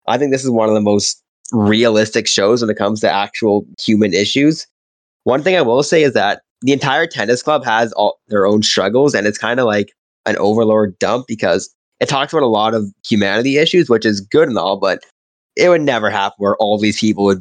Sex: male